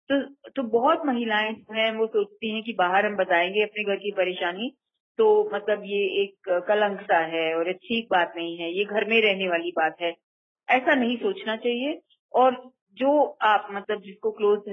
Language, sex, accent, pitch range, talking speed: Kannada, female, native, 180-250 Hz, 185 wpm